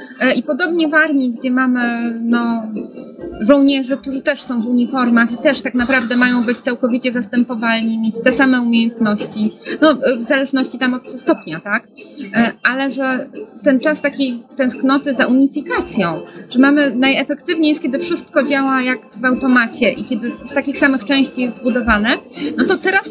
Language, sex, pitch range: Polish, female, 240-295 Hz